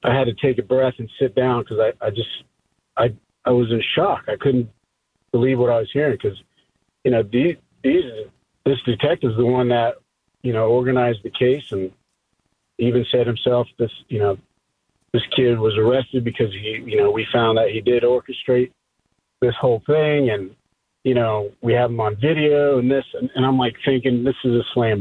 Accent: American